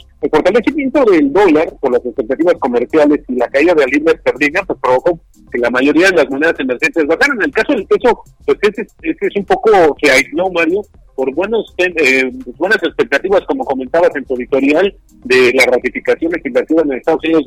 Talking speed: 190 wpm